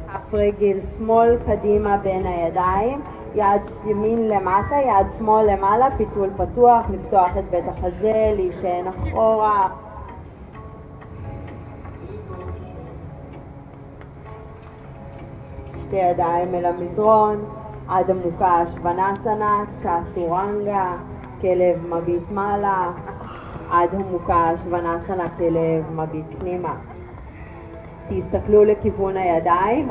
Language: Hebrew